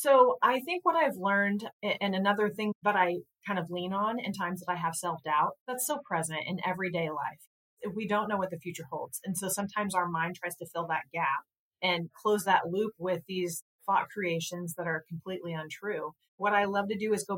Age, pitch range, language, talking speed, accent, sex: 30-49, 170-200 Hz, English, 220 wpm, American, female